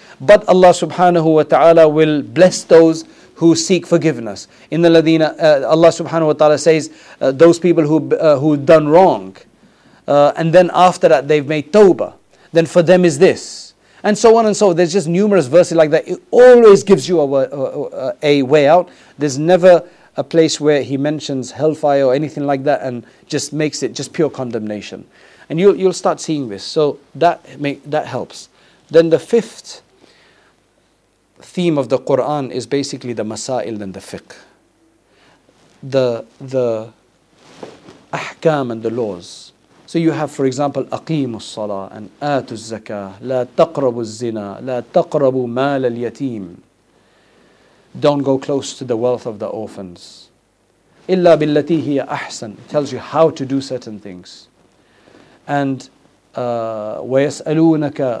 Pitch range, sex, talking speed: 125-165 Hz, male, 155 wpm